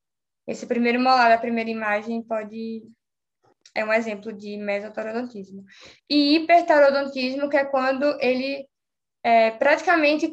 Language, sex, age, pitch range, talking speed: Portuguese, female, 10-29, 230-290 Hz, 115 wpm